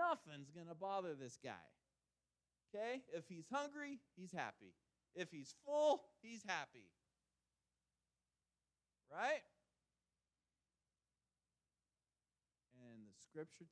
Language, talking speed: English, 90 wpm